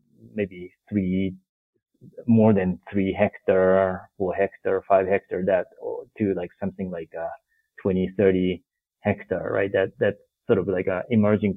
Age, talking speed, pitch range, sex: 30-49, 145 wpm, 95-115 Hz, male